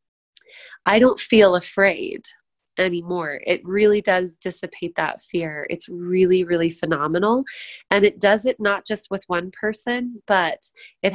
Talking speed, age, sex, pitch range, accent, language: 140 wpm, 20-39, female, 180-220 Hz, American, English